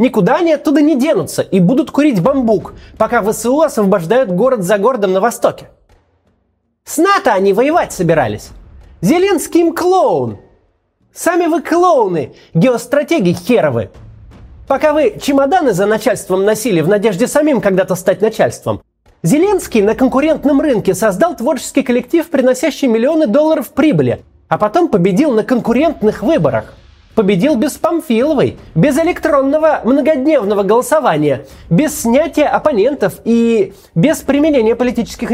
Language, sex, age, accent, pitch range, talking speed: Russian, male, 30-49, native, 210-305 Hz, 125 wpm